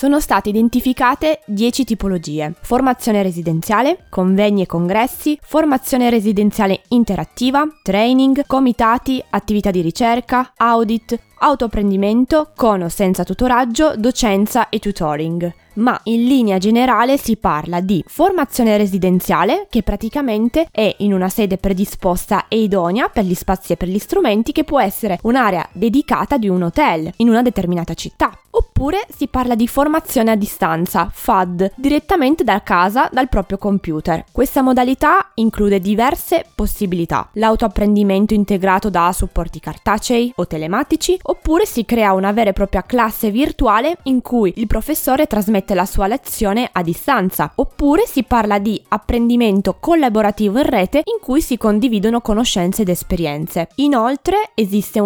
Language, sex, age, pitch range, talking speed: Italian, female, 20-39, 195-255 Hz, 135 wpm